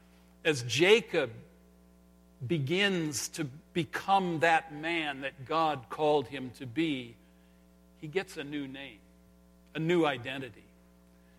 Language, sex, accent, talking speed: English, male, American, 110 wpm